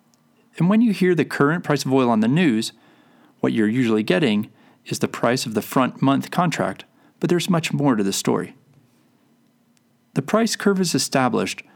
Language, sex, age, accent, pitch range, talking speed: English, male, 30-49, American, 120-205 Hz, 185 wpm